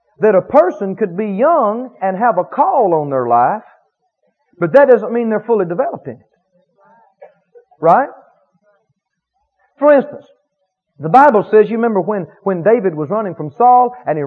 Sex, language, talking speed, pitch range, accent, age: male, English, 155 wpm, 190-265 Hz, American, 40-59